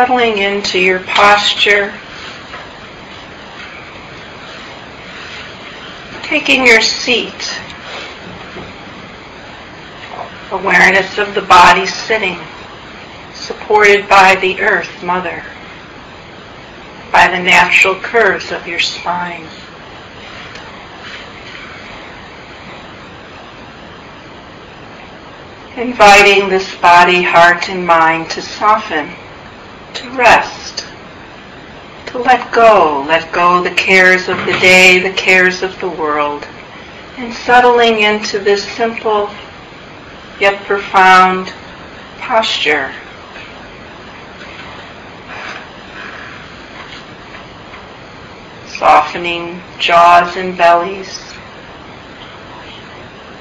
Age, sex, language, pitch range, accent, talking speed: 60-79, female, English, 175-210 Hz, American, 70 wpm